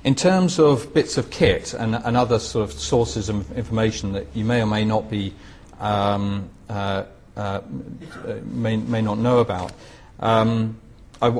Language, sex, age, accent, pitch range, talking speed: English, male, 40-59, British, 95-110 Hz, 165 wpm